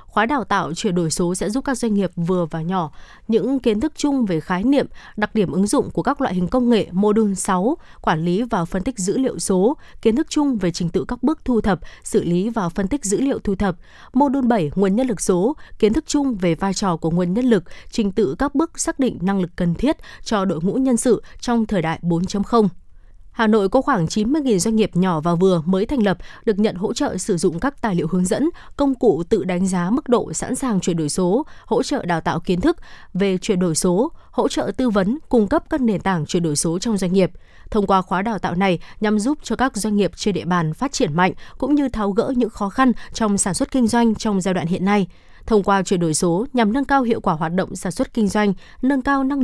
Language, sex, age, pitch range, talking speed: Vietnamese, female, 20-39, 180-245 Hz, 255 wpm